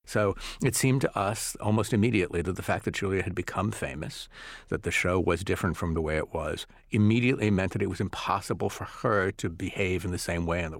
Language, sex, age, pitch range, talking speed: English, male, 50-69, 85-105 Hz, 230 wpm